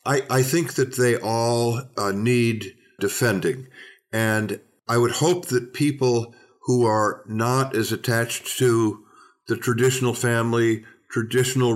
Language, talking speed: English, 130 wpm